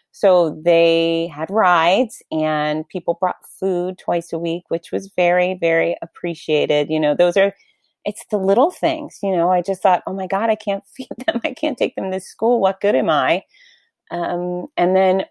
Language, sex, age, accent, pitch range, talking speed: English, female, 30-49, American, 155-190 Hz, 190 wpm